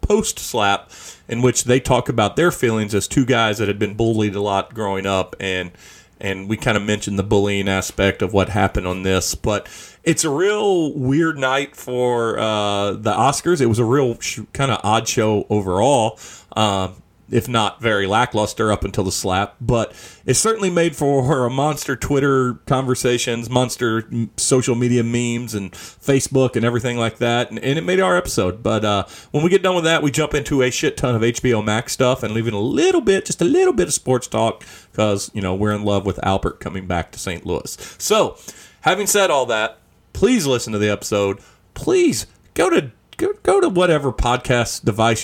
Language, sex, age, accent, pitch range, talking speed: English, male, 40-59, American, 105-145 Hz, 200 wpm